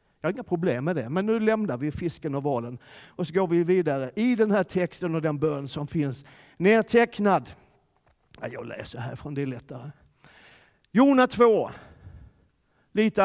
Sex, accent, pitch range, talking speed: male, native, 160-230 Hz, 170 wpm